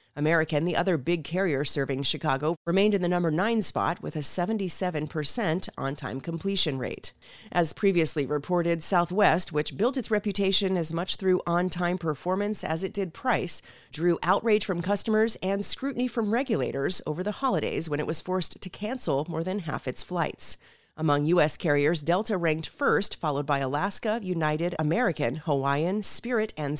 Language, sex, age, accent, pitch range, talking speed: English, female, 30-49, American, 150-190 Hz, 165 wpm